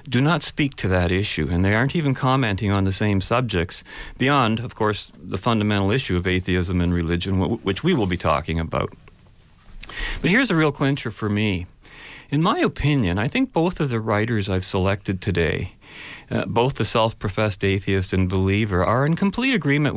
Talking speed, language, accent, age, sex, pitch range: 185 wpm, English, American, 40-59, male, 90-120 Hz